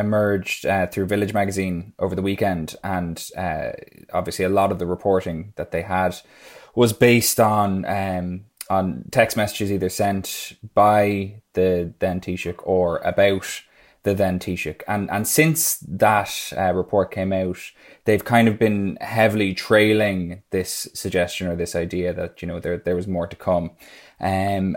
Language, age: English, 20-39